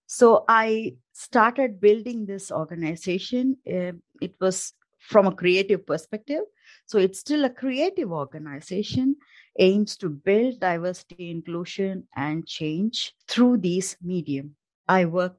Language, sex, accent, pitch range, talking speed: English, female, Indian, 170-245 Hz, 115 wpm